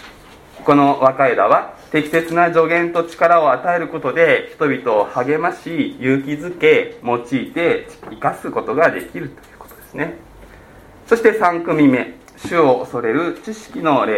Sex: male